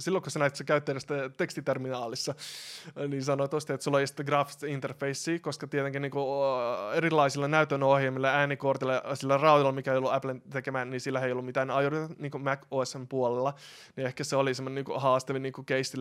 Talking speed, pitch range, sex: 190 wpm, 130-140 Hz, male